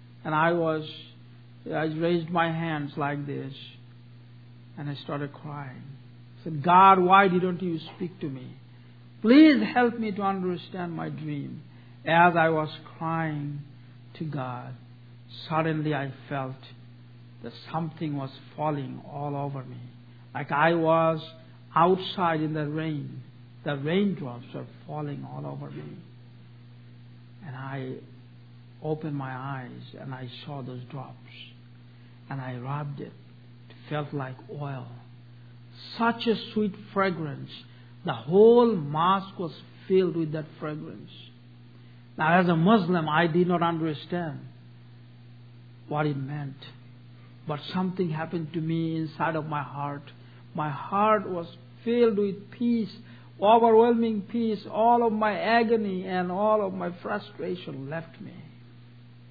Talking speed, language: 130 wpm, English